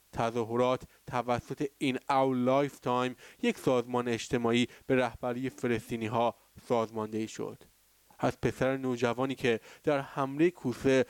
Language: Persian